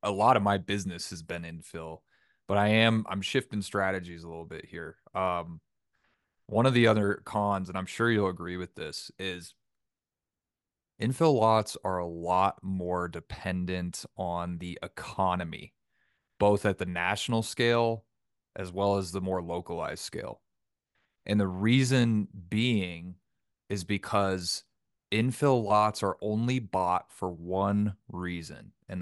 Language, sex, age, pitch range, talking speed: English, male, 30-49, 90-105 Hz, 145 wpm